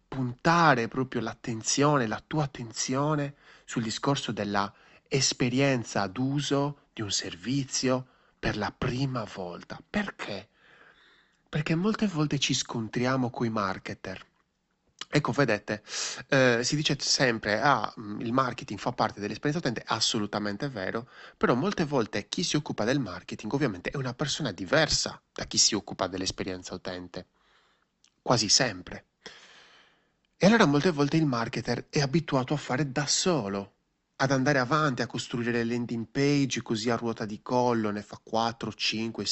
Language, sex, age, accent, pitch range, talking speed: Italian, male, 30-49, native, 110-145 Hz, 140 wpm